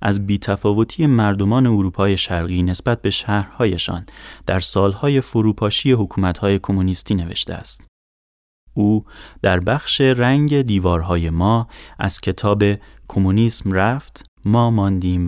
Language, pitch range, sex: Persian, 90-115 Hz, male